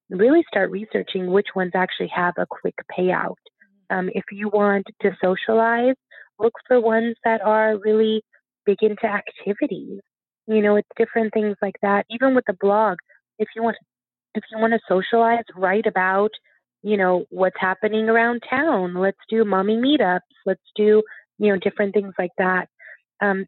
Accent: American